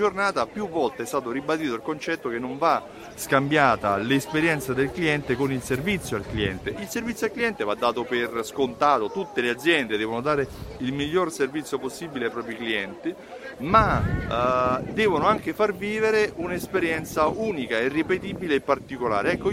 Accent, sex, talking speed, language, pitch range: native, male, 165 wpm, Italian, 115-160 Hz